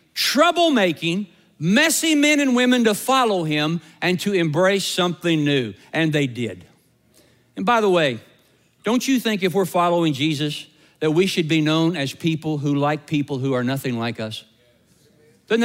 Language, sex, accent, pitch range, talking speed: English, male, American, 160-245 Hz, 165 wpm